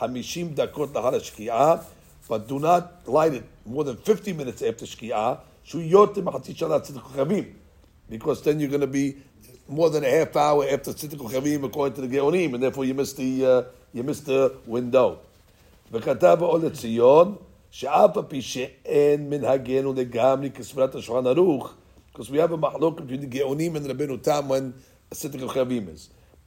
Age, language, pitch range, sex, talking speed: 60-79, English, 130-165 Hz, male, 105 wpm